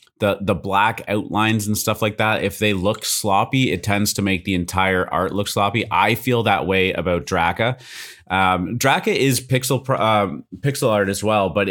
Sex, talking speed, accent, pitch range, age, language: male, 195 wpm, American, 90-110 Hz, 30-49, English